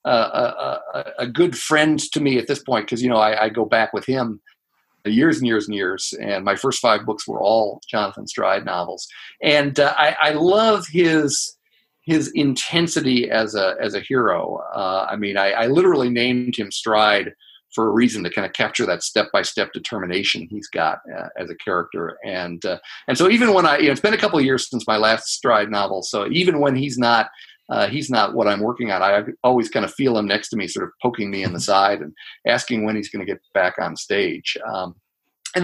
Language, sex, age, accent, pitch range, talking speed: English, male, 50-69, American, 110-150 Hz, 230 wpm